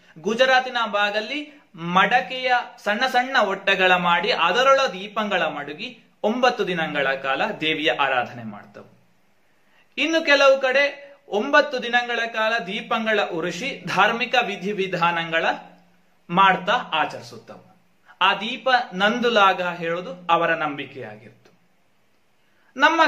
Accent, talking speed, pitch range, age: native, 90 wpm, 180-245 Hz, 30-49